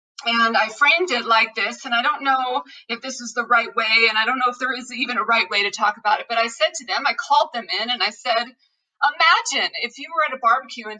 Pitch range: 245-345 Hz